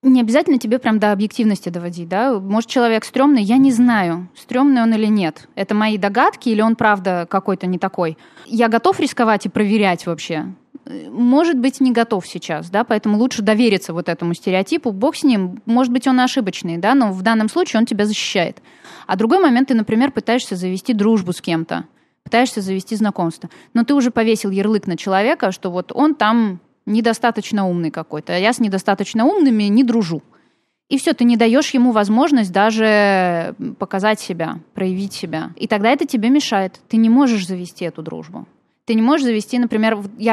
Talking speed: 180 wpm